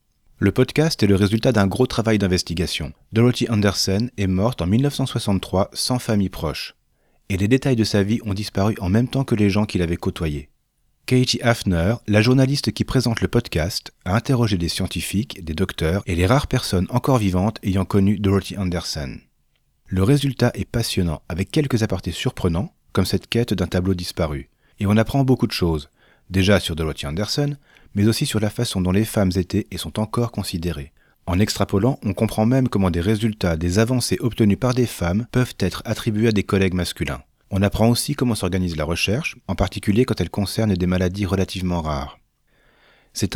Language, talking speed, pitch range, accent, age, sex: French, 185 wpm, 90-120 Hz, French, 30-49, male